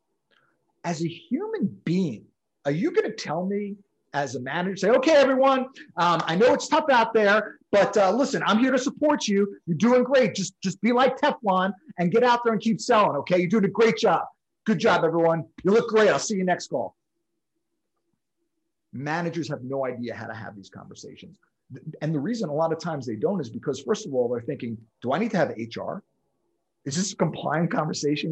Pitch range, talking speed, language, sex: 140-220 Hz, 210 wpm, English, male